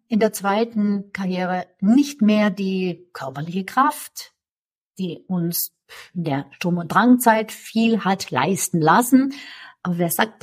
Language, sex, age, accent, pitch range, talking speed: German, female, 50-69, German, 170-225 Hz, 130 wpm